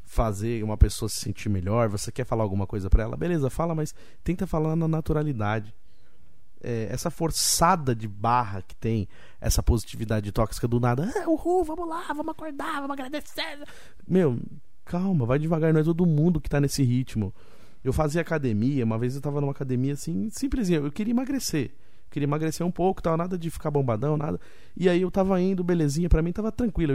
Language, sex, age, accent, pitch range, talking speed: Portuguese, male, 20-39, Brazilian, 125-190 Hz, 190 wpm